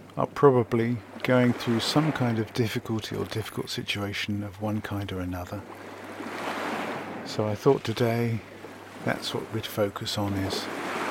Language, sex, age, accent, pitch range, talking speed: English, male, 50-69, British, 100-120 Hz, 140 wpm